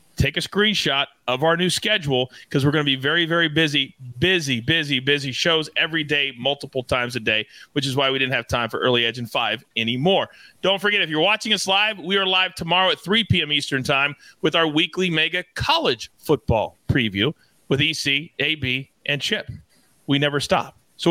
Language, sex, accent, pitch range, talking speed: English, male, American, 130-185 Hz, 200 wpm